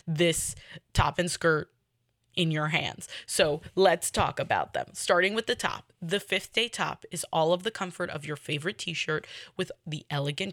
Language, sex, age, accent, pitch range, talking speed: English, female, 10-29, American, 155-190 Hz, 180 wpm